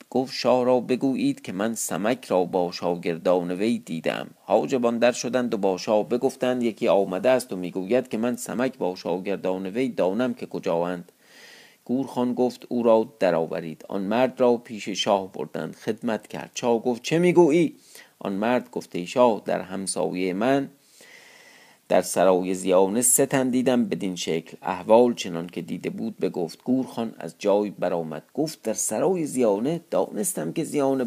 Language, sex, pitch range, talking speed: Persian, male, 100-130 Hz, 155 wpm